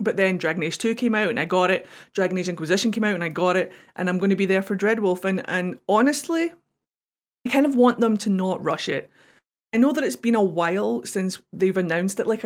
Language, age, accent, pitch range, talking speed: English, 30-49, British, 175-215 Hz, 250 wpm